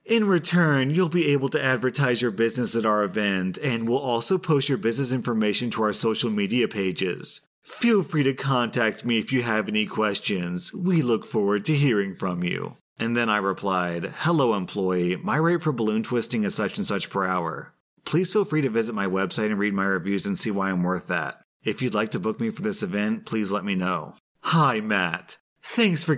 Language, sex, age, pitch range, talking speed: English, male, 30-49, 110-155 Hz, 210 wpm